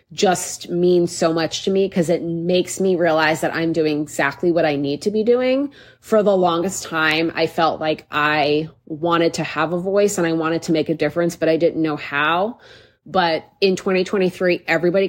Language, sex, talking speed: English, female, 200 wpm